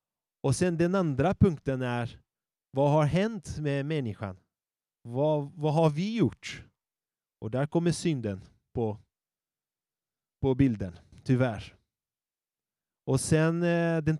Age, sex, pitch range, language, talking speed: 30-49, male, 110-155 Hz, Swedish, 115 wpm